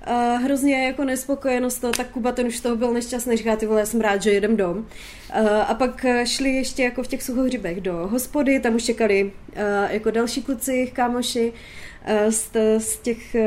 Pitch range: 210-275 Hz